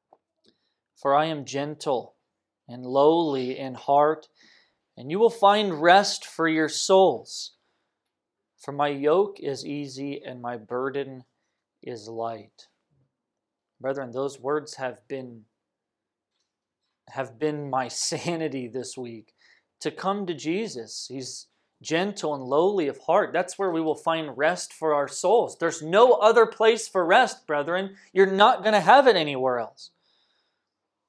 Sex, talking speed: male, 135 wpm